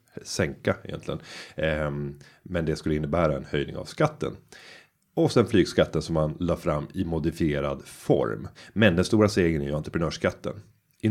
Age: 30-49